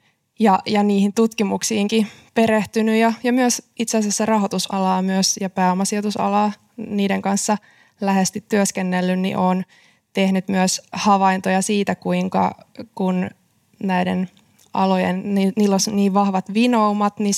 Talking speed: 115 wpm